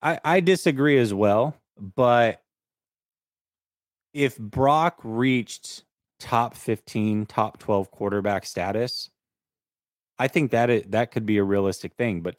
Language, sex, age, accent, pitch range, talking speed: English, male, 30-49, American, 100-130 Hz, 125 wpm